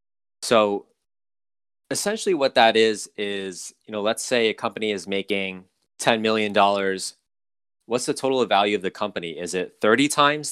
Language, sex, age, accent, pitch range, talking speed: English, male, 20-39, American, 95-115 Hz, 155 wpm